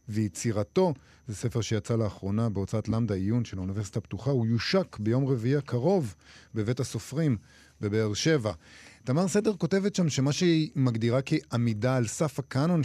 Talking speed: 145 wpm